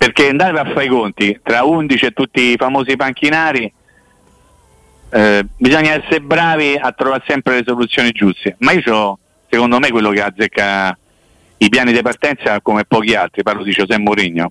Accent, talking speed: native, 175 wpm